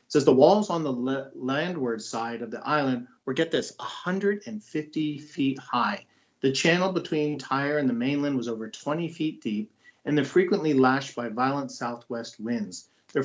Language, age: English, 40-59